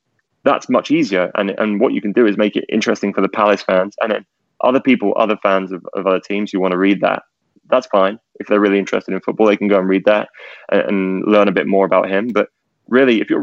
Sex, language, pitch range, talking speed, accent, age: male, English, 95-105 Hz, 260 wpm, British, 20-39